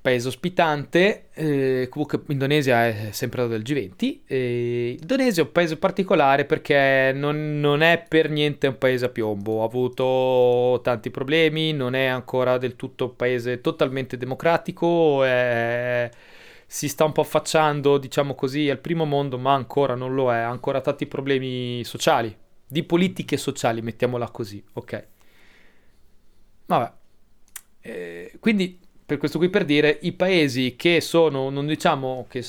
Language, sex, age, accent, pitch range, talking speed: Italian, male, 30-49, native, 125-150 Hz, 150 wpm